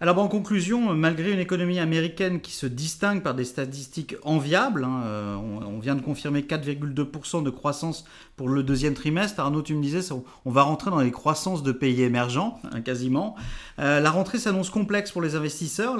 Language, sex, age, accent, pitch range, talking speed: French, male, 40-59, French, 140-180 Hz, 190 wpm